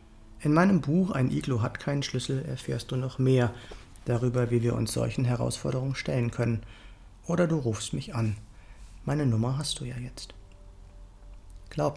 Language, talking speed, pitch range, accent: German, 160 wpm, 110-135 Hz, German